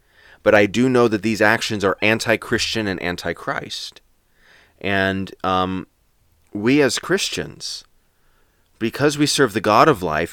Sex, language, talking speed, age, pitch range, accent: male, English, 135 wpm, 30-49, 105-155 Hz, American